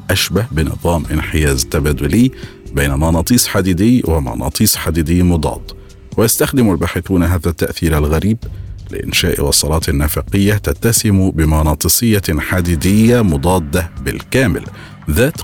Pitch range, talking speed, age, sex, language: 80-105 Hz, 95 wpm, 50-69, male, Arabic